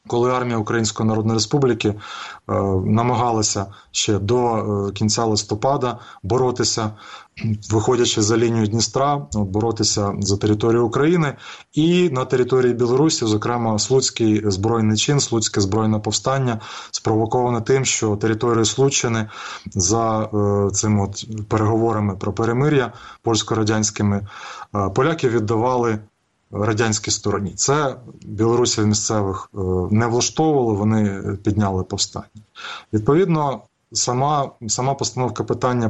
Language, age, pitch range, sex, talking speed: Ukrainian, 20-39, 105-125 Hz, male, 105 wpm